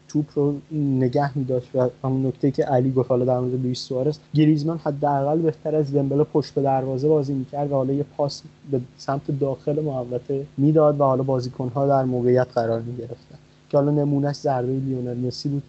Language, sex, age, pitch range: Persian, male, 30-49, 125-150 Hz